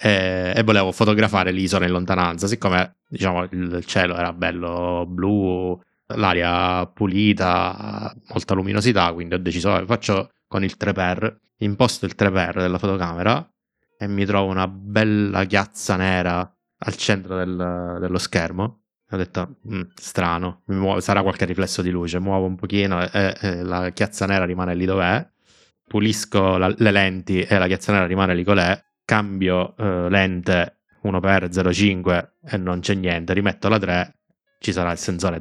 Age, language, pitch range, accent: 20-39, Italian, 90-100 Hz, native